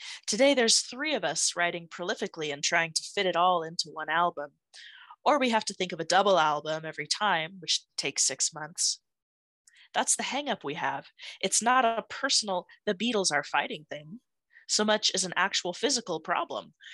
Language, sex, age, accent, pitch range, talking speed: English, female, 20-39, American, 160-225 Hz, 185 wpm